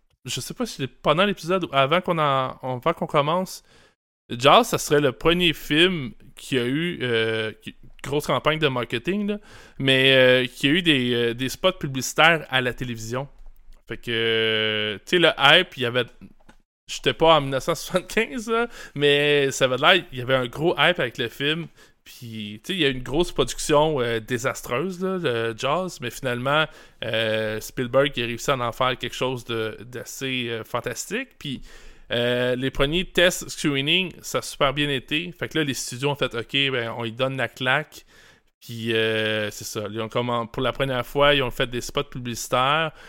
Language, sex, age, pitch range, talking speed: French, male, 20-39, 120-155 Hz, 200 wpm